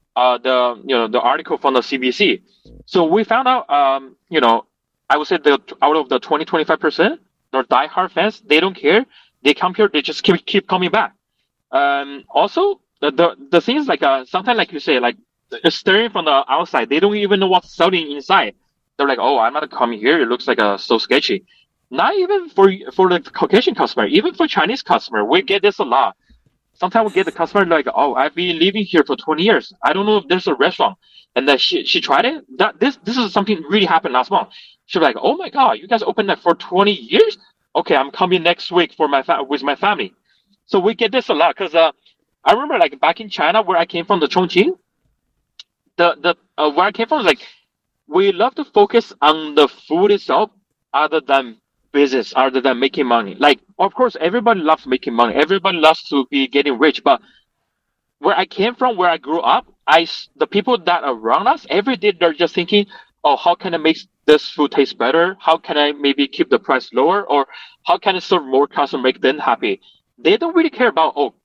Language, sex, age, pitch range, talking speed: English, male, 30-49, 155-225 Hz, 220 wpm